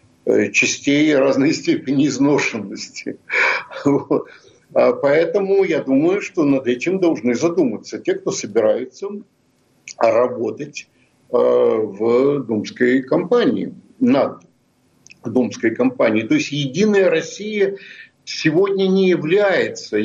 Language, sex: Russian, male